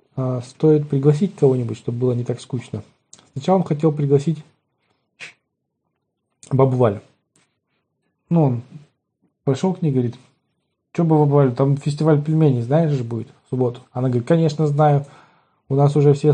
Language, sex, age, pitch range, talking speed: Russian, male, 20-39, 130-150 Hz, 140 wpm